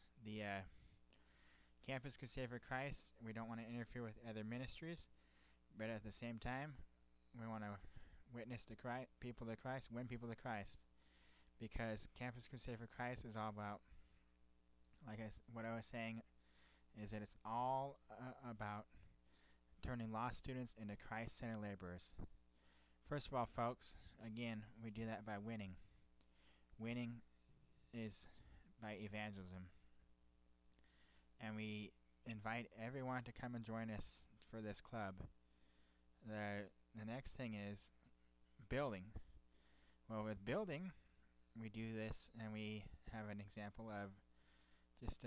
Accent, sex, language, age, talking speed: American, male, English, 20-39, 140 wpm